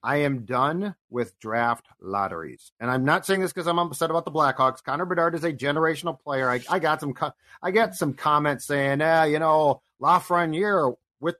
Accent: American